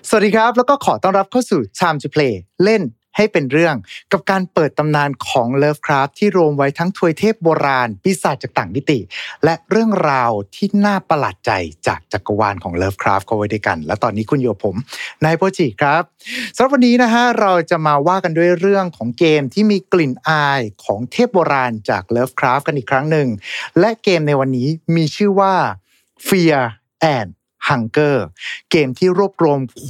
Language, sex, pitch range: Thai, male, 115-180 Hz